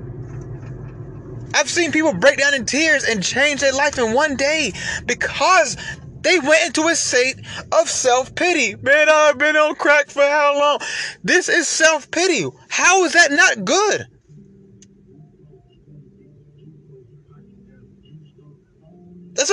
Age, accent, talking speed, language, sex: 30-49, American, 120 wpm, English, male